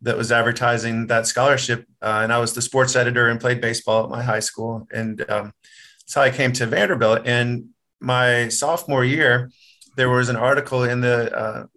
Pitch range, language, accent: 115-130 Hz, English, American